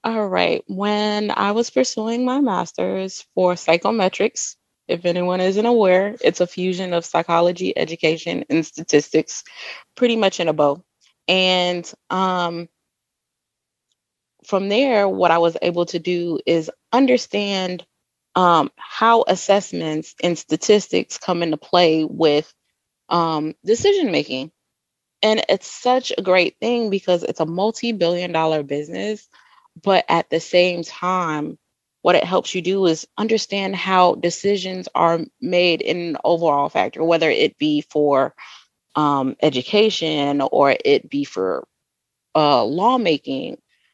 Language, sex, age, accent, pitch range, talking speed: English, female, 20-39, American, 160-200 Hz, 130 wpm